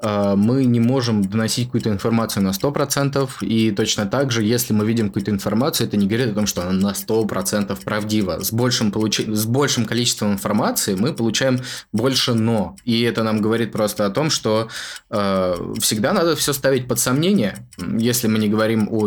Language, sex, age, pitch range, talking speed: Russian, male, 20-39, 100-120 Hz, 175 wpm